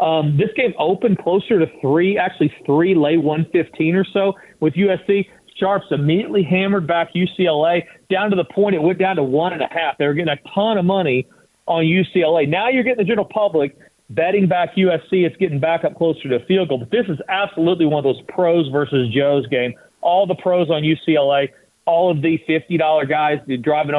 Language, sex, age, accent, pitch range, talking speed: English, male, 40-59, American, 155-190 Hz, 205 wpm